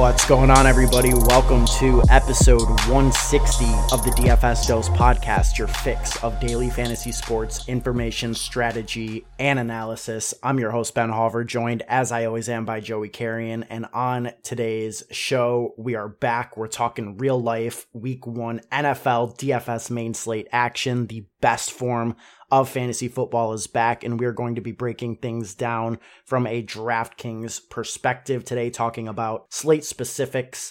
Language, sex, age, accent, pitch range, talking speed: English, male, 20-39, American, 115-125 Hz, 155 wpm